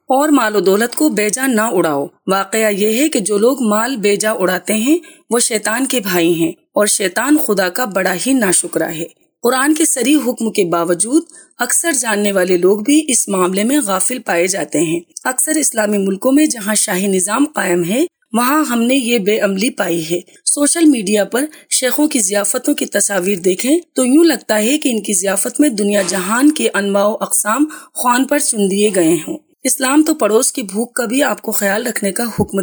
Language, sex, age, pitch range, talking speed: Urdu, female, 30-49, 205-280 Hz, 195 wpm